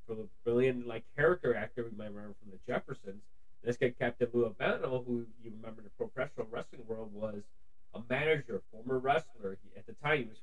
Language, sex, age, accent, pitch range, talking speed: English, male, 30-49, American, 100-130 Hz, 205 wpm